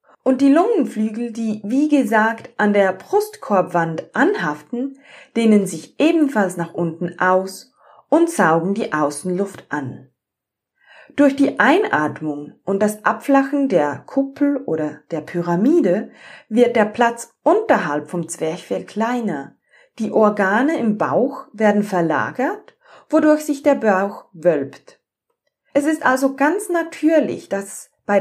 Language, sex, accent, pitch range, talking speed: German, female, German, 195-280 Hz, 120 wpm